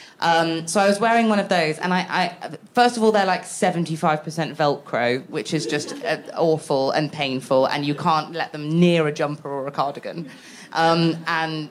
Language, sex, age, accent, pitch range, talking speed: English, female, 30-49, British, 155-195 Hz, 190 wpm